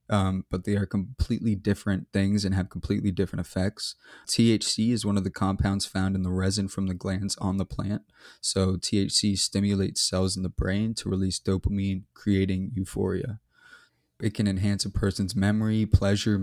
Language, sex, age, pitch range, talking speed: English, male, 20-39, 95-105 Hz, 170 wpm